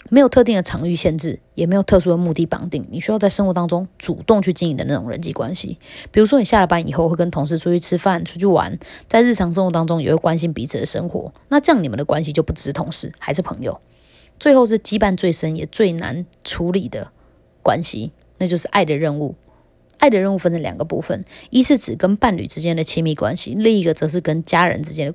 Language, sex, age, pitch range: Chinese, female, 20-39, 160-200 Hz